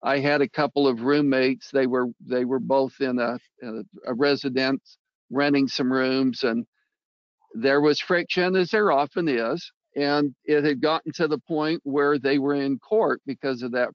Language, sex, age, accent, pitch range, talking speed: English, male, 60-79, American, 145-190 Hz, 175 wpm